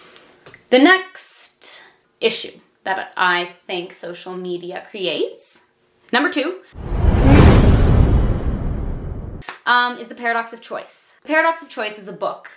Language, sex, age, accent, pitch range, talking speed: English, female, 20-39, American, 190-250 Hz, 110 wpm